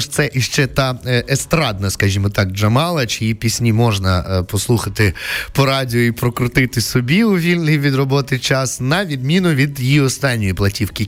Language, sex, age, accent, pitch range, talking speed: Ukrainian, male, 20-39, native, 105-135 Hz, 145 wpm